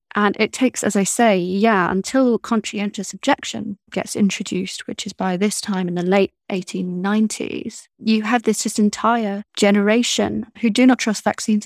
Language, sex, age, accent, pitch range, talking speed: English, female, 20-39, British, 185-225 Hz, 165 wpm